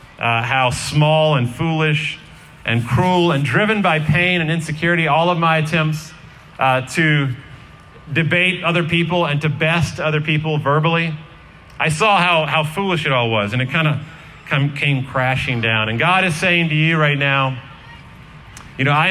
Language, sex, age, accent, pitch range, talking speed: English, male, 40-59, American, 130-170 Hz, 170 wpm